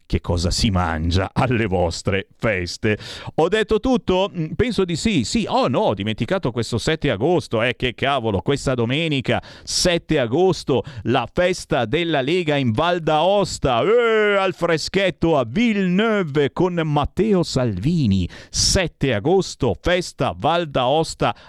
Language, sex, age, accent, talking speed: Italian, male, 50-69, native, 135 wpm